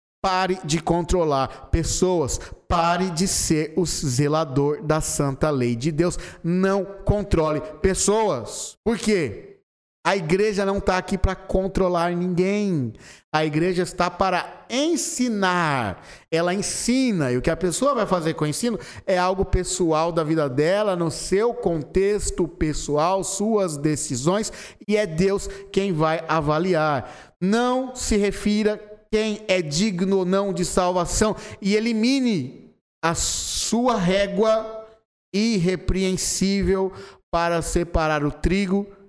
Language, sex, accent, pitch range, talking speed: Portuguese, male, Brazilian, 155-200 Hz, 125 wpm